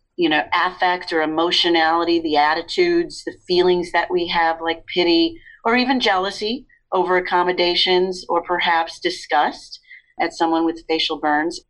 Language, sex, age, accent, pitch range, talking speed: English, female, 40-59, American, 165-185 Hz, 140 wpm